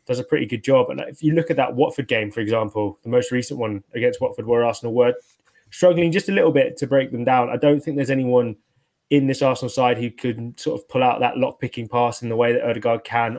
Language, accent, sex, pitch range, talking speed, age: English, British, male, 120-135 Hz, 260 wpm, 20-39